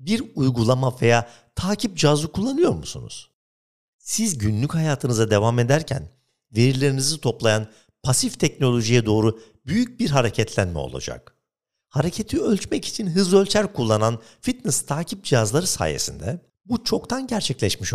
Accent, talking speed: native, 115 wpm